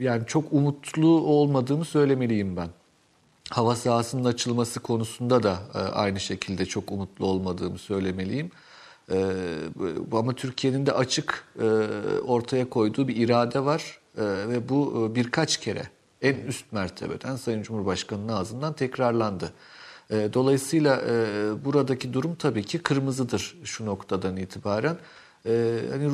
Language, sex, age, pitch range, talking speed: Turkish, male, 50-69, 110-140 Hz, 110 wpm